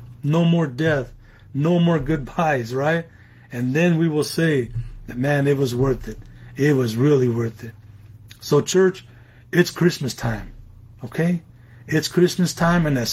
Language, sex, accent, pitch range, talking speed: English, male, American, 120-155 Hz, 150 wpm